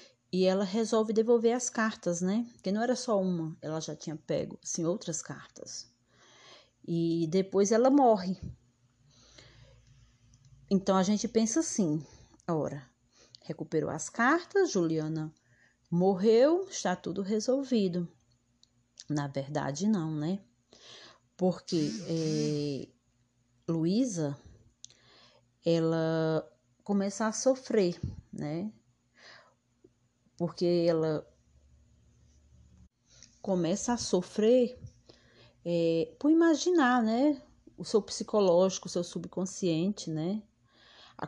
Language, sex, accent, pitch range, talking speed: Portuguese, female, Brazilian, 150-215 Hz, 95 wpm